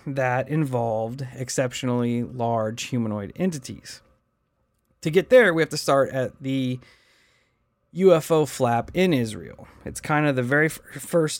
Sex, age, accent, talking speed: male, 30-49, American, 135 wpm